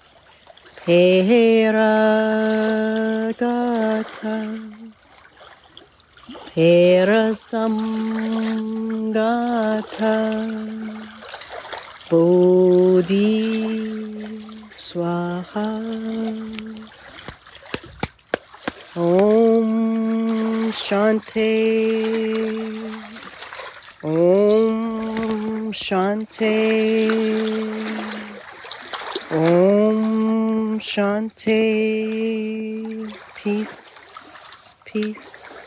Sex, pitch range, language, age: female, 185-220 Hz, English, 30-49